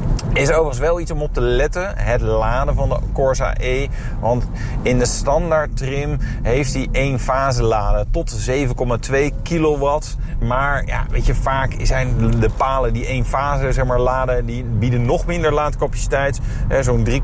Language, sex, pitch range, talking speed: Dutch, male, 115-135 Hz, 165 wpm